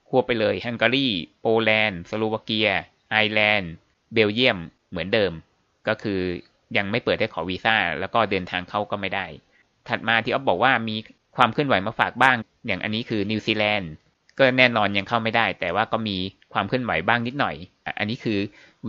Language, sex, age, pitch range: Thai, male, 20-39, 95-115 Hz